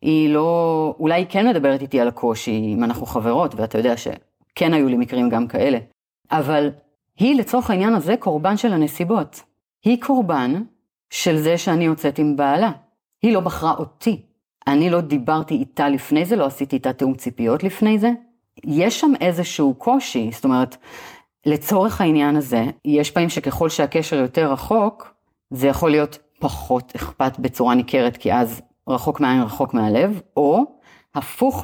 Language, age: Hebrew, 30-49